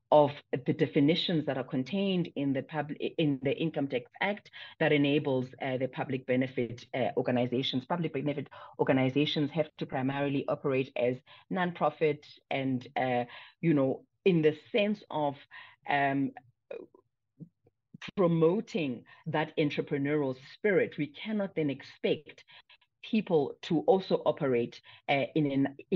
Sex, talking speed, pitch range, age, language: female, 125 wpm, 135-160 Hz, 40-59, English